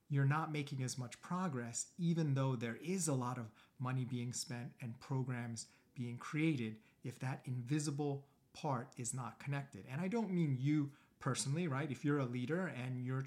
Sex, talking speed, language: male, 180 wpm, English